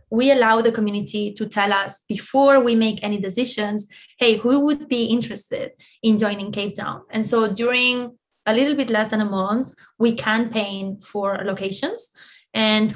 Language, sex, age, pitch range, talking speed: English, female, 20-39, 205-235 Hz, 165 wpm